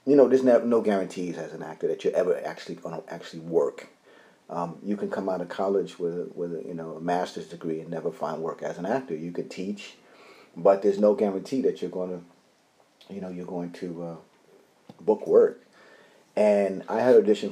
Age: 30-49